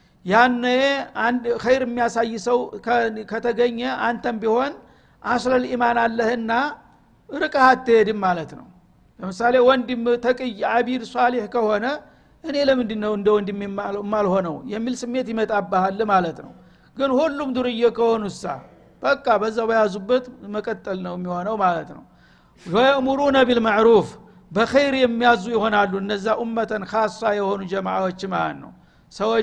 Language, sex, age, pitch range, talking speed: Amharic, male, 60-79, 200-240 Hz, 85 wpm